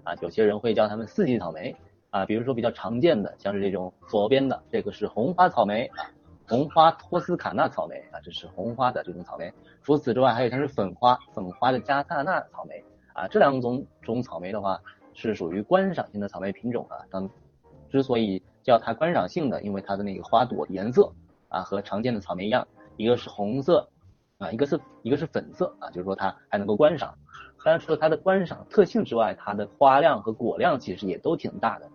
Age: 20-39